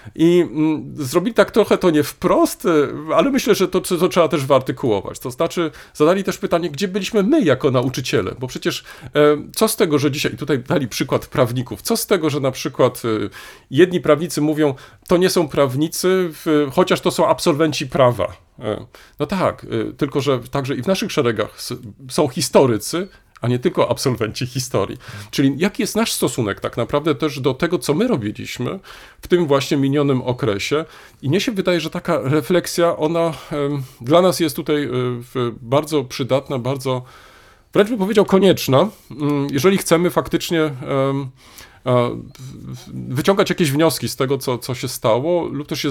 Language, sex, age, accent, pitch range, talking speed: Polish, male, 40-59, native, 125-175 Hz, 160 wpm